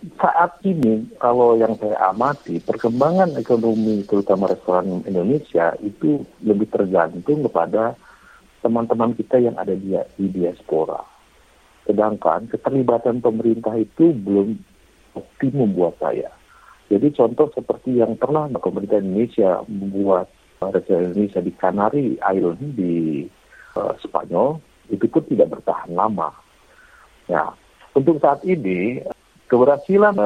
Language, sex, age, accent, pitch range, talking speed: Indonesian, male, 50-69, native, 95-125 Hz, 110 wpm